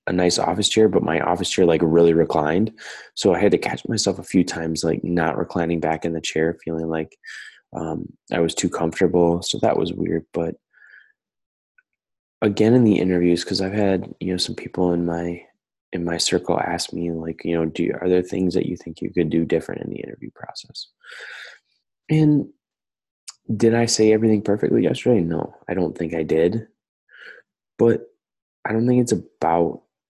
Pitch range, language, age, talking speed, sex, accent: 85-95 Hz, English, 20-39, 190 wpm, male, American